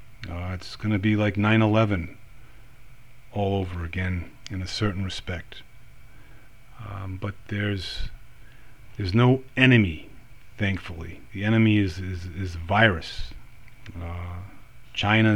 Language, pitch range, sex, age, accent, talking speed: English, 95-115 Hz, male, 40-59, American, 115 wpm